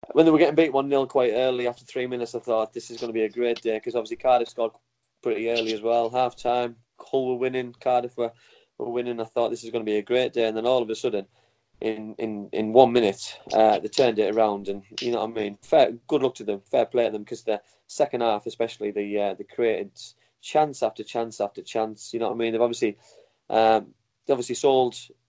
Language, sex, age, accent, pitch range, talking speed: English, male, 20-39, British, 110-125 Hz, 245 wpm